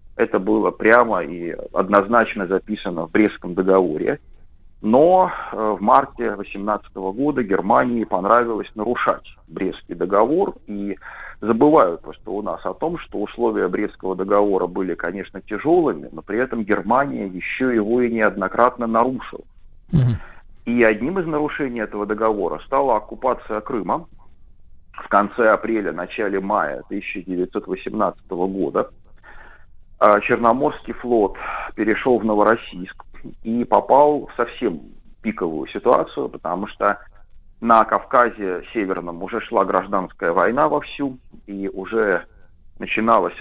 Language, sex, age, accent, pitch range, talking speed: Russian, male, 40-59, native, 95-115 Hz, 110 wpm